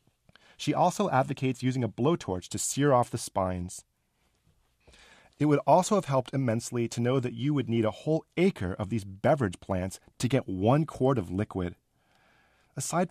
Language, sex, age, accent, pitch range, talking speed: English, male, 40-59, American, 100-135 Hz, 170 wpm